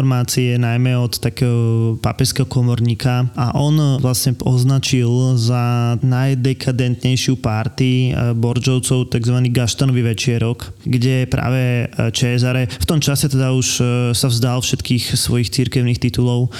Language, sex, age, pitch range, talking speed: Slovak, male, 20-39, 120-130 Hz, 110 wpm